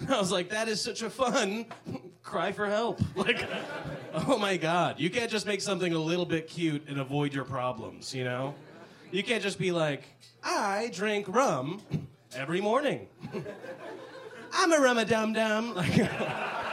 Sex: male